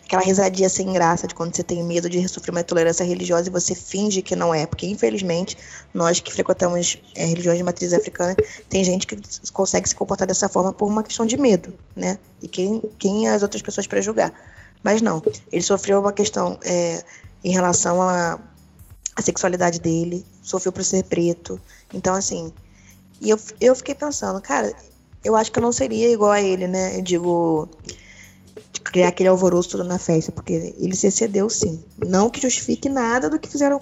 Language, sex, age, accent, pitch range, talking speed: Portuguese, female, 20-39, Brazilian, 170-220 Hz, 185 wpm